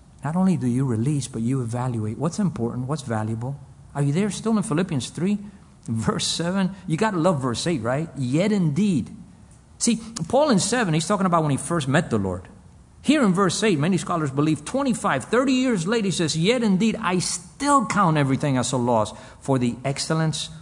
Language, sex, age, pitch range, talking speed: English, male, 50-69, 125-175 Hz, 200 wpm